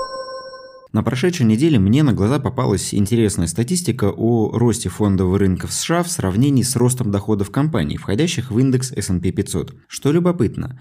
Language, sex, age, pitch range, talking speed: Russian, male, 20-39, 95-130 Hz, 150 wpm